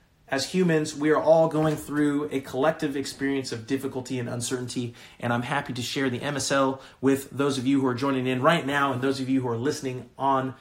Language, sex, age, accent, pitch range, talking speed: English, male, 30-49, American, 125-150 Hz, 220 wpm